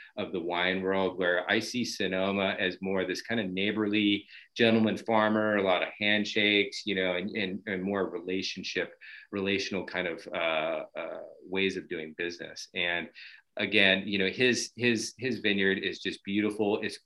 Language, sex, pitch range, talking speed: English, male, 95-115 Hz, 170 wpm